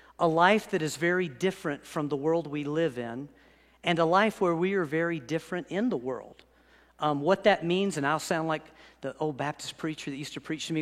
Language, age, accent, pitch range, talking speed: English, 50-69, American, 155-200 Hz, 225 wpm